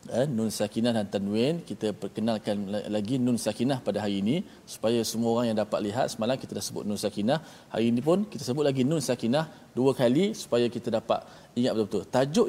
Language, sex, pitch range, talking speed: Malayalam, male, 110-135 Hz, 200 wpm